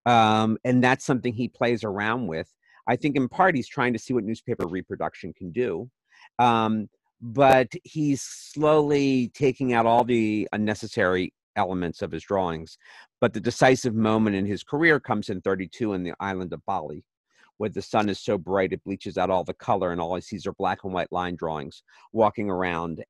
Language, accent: English, American